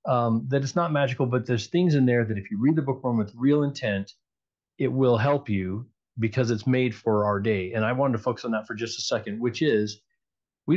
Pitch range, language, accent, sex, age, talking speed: 105-130 Hz, English, American, male, 30-49, 250 wpm